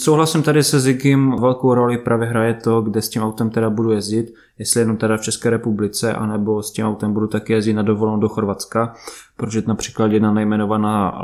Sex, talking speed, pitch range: male, 205 wpm, 105-120 Hz